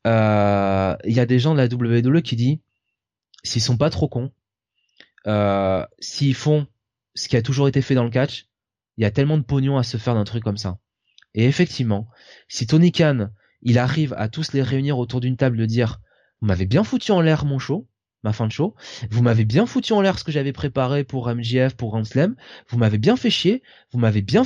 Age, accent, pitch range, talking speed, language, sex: 20-39, French, 115-155 Hz, 225 wpm, French, male